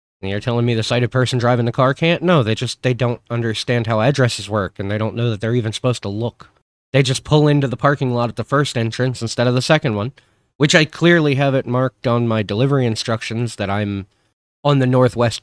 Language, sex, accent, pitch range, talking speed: English, male, American, 105-130 Hz, 235 wpm